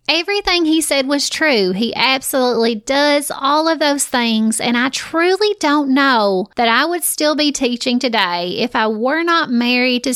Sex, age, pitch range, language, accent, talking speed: female, 30-49, 235-300 Hz, English, American, 175 wpm